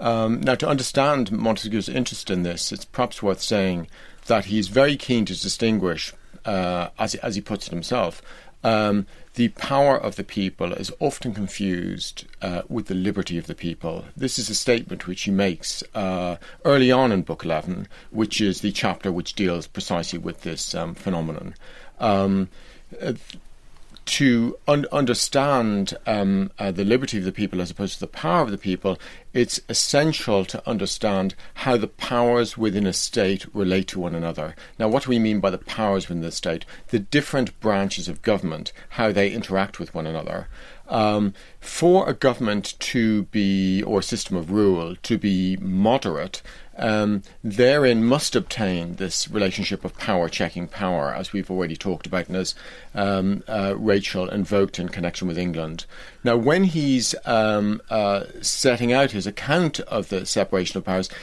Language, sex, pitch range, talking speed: English, male, 95-120 Hz, 170 wpm